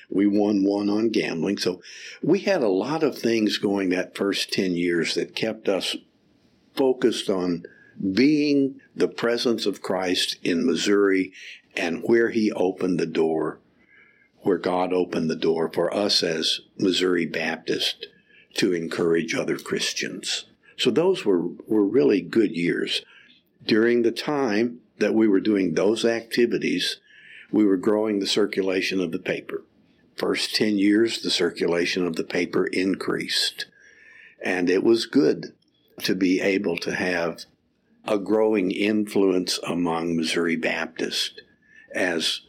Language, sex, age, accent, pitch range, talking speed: English, male, 60-79, American, 90-115 Hz, 140 wpm